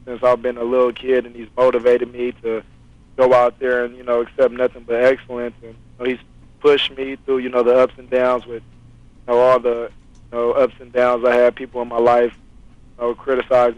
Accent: American